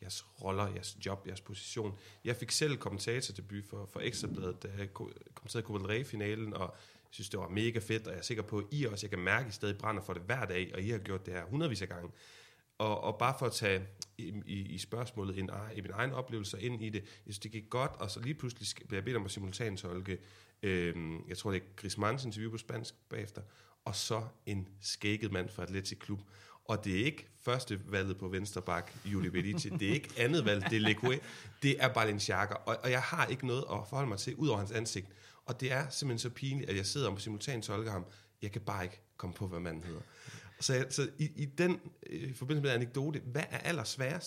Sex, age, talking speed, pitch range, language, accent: male, 30-49, 240 wpm, 100-120 Hz, Danish, native